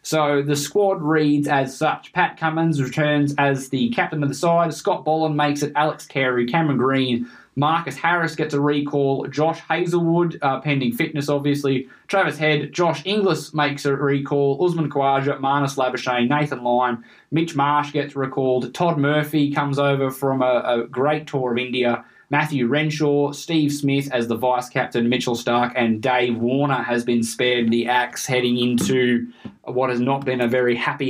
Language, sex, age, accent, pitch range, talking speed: English, male, 20-39, Australian, 125-150 Hz, 170 wpm